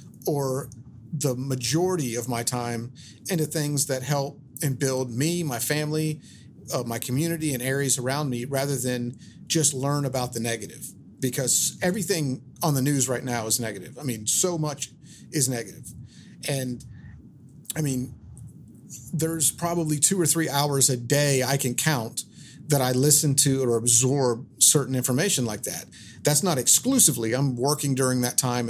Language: English